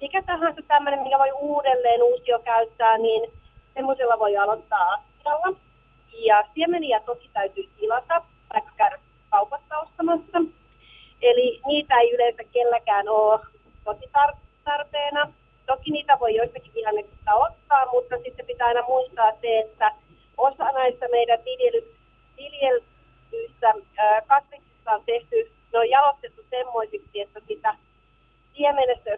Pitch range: 220-330 Hz